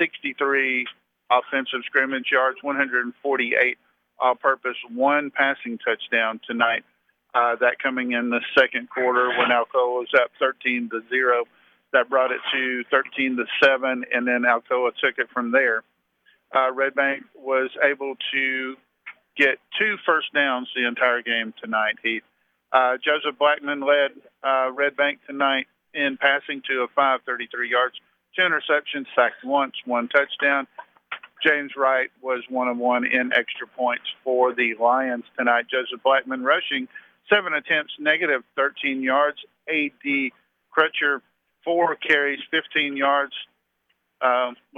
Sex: male